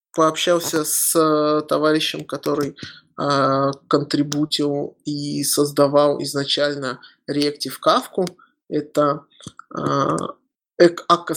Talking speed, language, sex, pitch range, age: 75 wpm, Russian, male, 145-165 Hz, 20-39